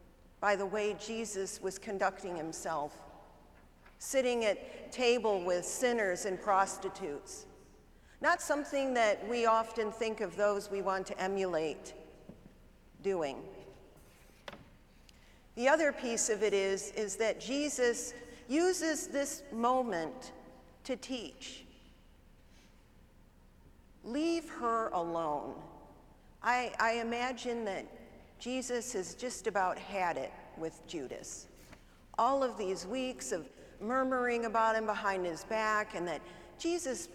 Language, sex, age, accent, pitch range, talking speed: English, female, 50-69, American, 190-245 Hz, 115 wpm